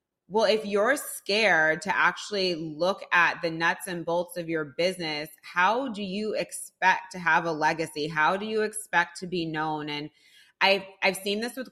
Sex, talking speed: female, 185 wpm